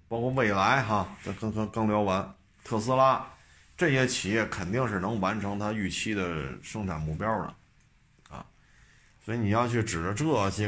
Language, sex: Chinese, male